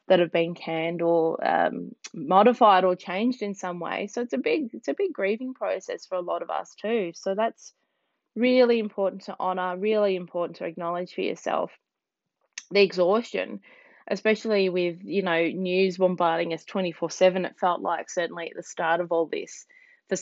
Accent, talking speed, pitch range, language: Australian, 185 wpm, 175-210 Hz, English